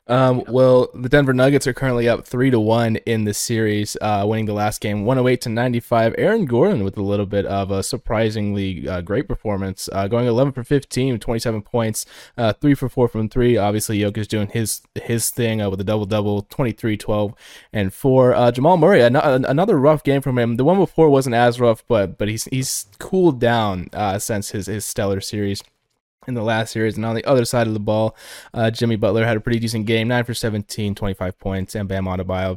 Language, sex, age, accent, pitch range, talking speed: English, male, 20-39, American, 100-120 Hz, 210 wpm